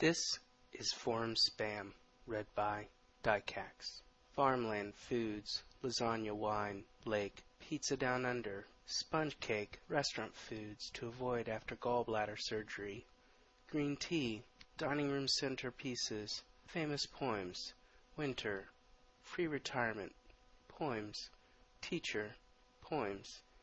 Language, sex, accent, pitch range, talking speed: English, male, American, 105-150 Hz, 95 wpm